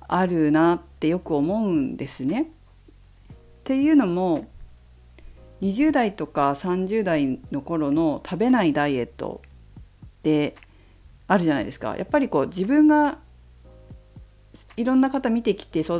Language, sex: Japanese, female